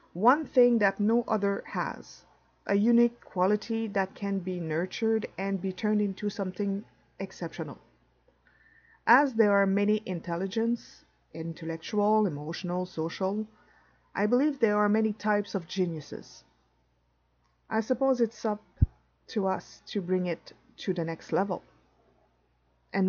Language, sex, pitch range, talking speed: English, female, 175-225 Hz, 125 wpm